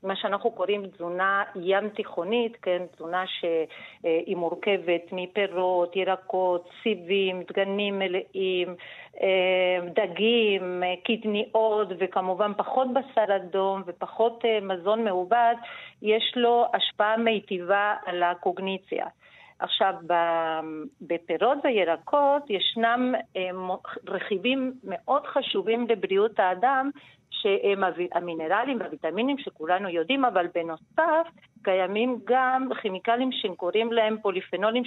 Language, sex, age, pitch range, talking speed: Hebrew, female, 40-59, 185-230 Hz, 90 wpm